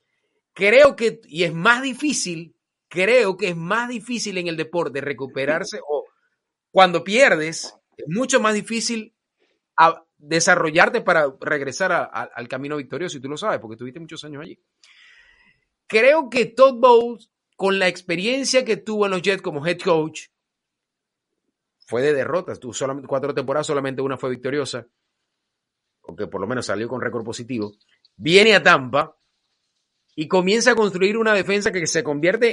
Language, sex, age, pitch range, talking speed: Spanish, male, 30-49, 160-245 Hz, 160 wpm